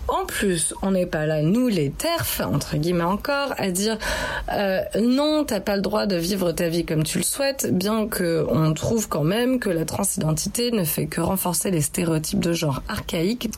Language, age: French, 30-49